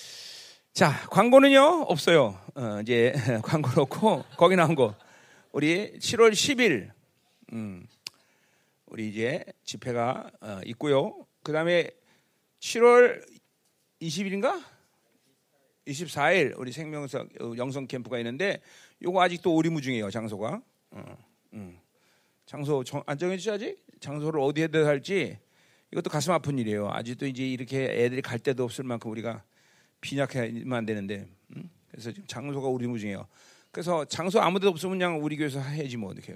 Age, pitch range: 40-59, 120-170 Hz